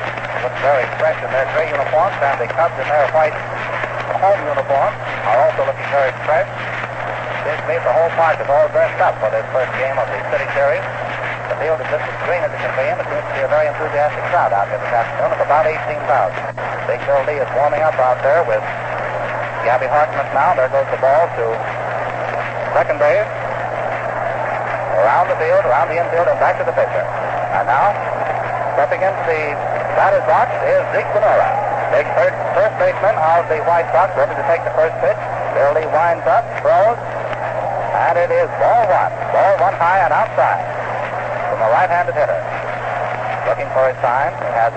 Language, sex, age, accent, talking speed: English, male, 60-79, American, 190 wpm